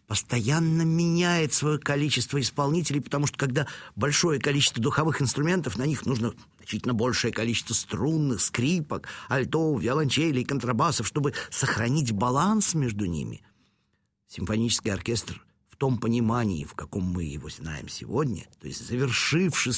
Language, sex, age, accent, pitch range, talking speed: Russian, male, 50-69, native, 105-140 Hz, 125 wpm